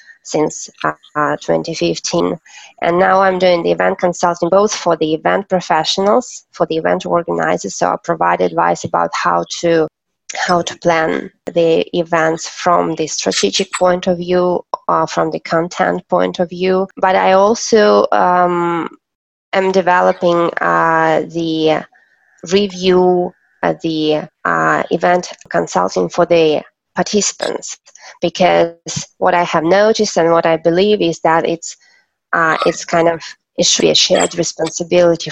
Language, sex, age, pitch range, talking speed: English, female, 20-39, 160-185 Hz, 140 wpm